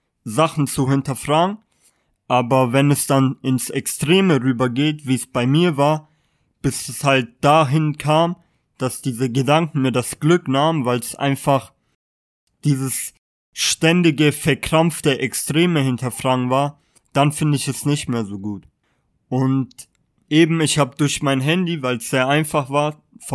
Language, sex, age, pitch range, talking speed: German, male, 20-39, 130-155 Hz, 145 wpm